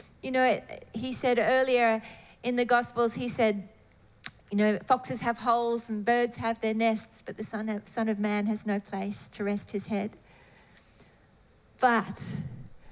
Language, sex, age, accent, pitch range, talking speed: English, female, 40-59, Australian, 225-290 Hz, 155 wpm